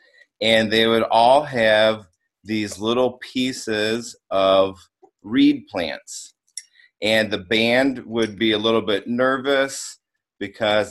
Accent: American